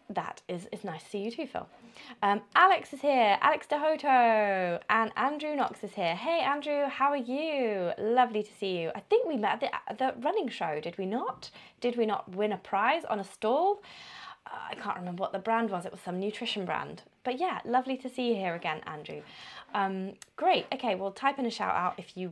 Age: 20-39